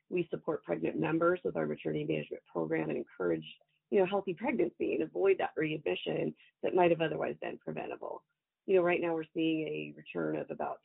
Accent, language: American, English